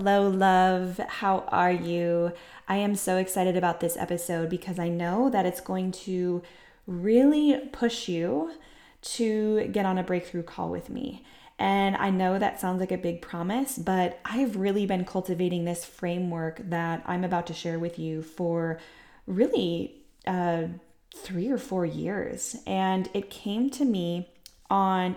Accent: American